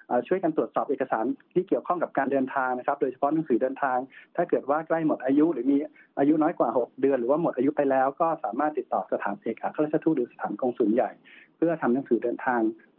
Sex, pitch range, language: male, 130-165 Hz, Thai